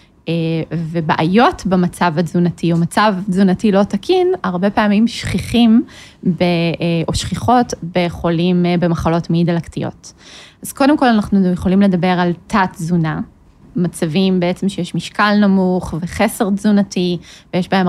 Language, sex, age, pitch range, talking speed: Hebrew, female, 20-39, 175-210 Hz, 115 wpm